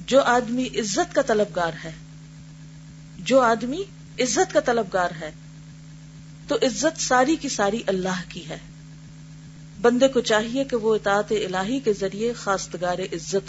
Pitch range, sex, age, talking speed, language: 155-230 Hz, female, 40-59, 140 wpm, Urdu